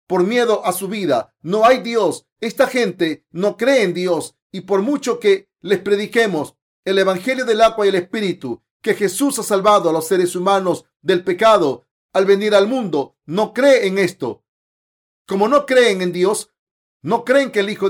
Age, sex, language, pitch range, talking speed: 40-59, male, Spanish, 185-235 Hz, 185 wpm